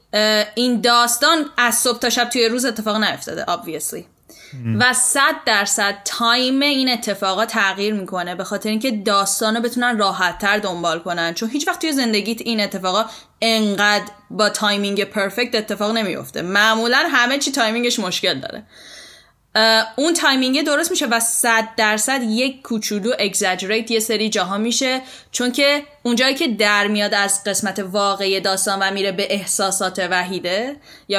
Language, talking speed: Persian, 150 wpm